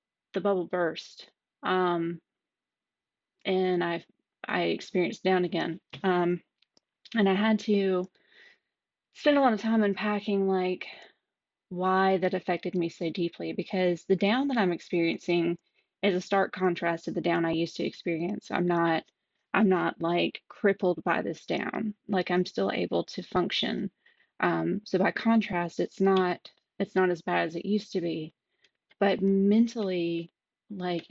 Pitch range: 175-200 Hz